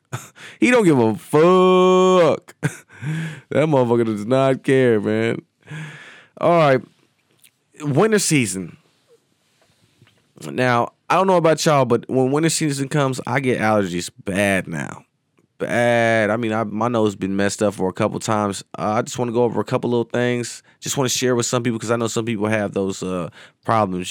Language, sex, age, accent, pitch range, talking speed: English, male, 20-39, American, 100-120 Hz, 180 wpm